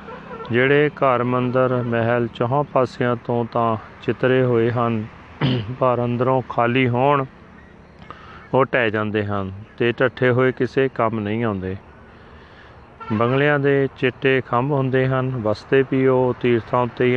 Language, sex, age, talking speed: Punjabi, male, 40-59, 130 wpm